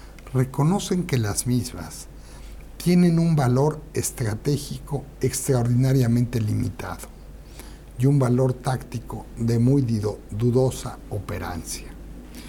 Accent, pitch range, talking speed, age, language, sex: Mexican, 105-140 Hz, 85 wpm, 60-79, English, male